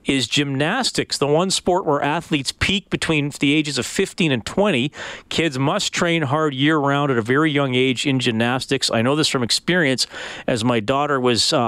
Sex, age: male, 40-59